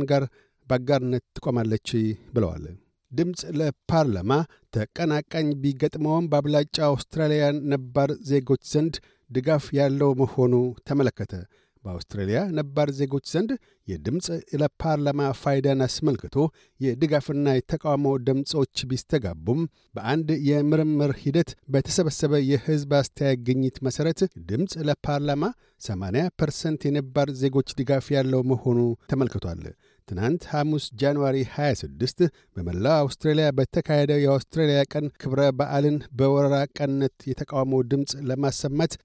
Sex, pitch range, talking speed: male, 130-150 Hz, 95 wpm